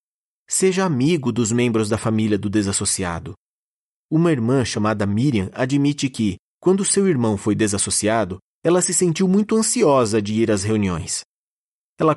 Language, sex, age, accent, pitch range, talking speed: Portuguese, male, 30-49, Brazilian, 105-155 Hz, 145 wpm